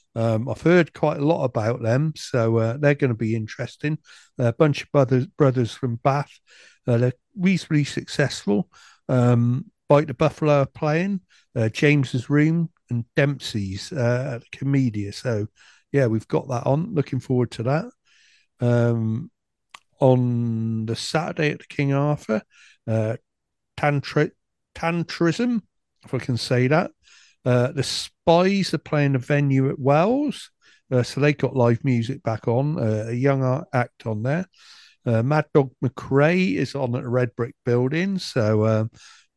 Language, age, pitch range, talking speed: English, 60-79, 120-150 Hz, 155 wpm